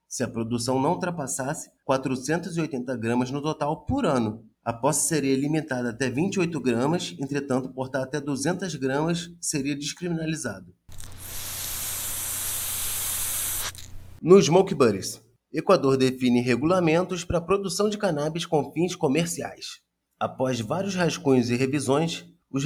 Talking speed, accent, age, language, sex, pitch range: 115 wpm, Brazilian, 30-49, Portuguese, male, 125-170 Hz